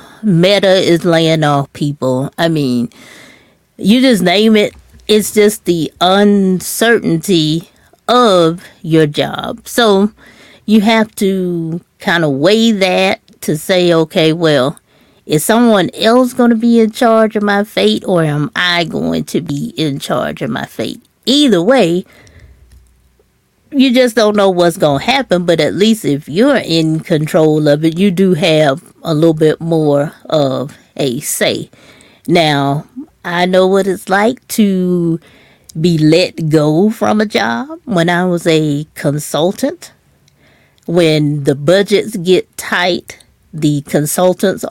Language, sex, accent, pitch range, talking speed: English, female, American, 155-205 Hz, 140 wpm